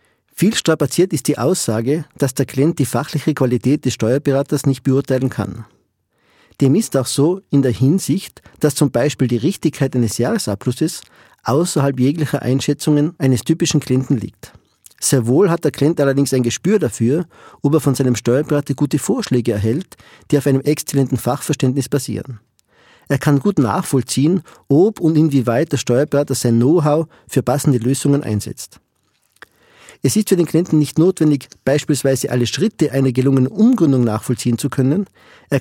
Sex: male